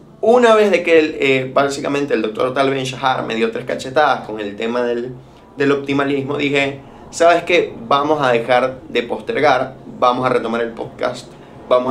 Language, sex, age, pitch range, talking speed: Spanish, male, 20-39, 110-140 Hz, 170 wpm